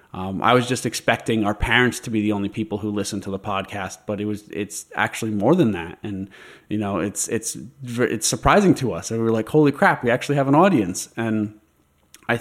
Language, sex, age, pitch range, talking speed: English, male, 30-49, 100-115 Hz, 225 wpm